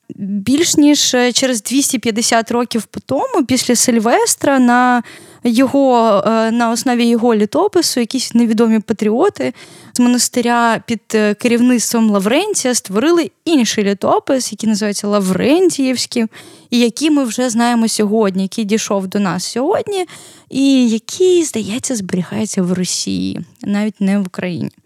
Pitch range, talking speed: 220-270 Hz, 115 wpm